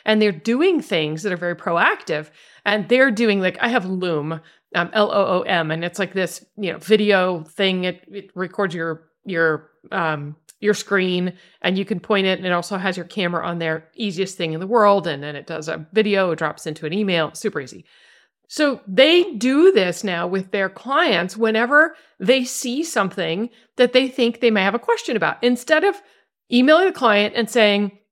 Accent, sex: American, female